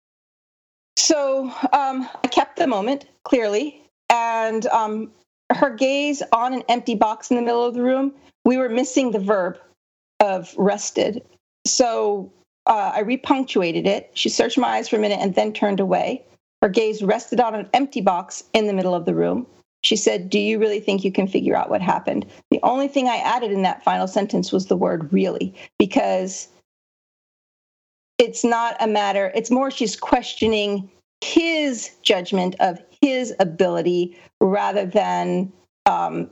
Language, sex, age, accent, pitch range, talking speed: English, female, 40-59, American, 195-255 Hz, 165 wpm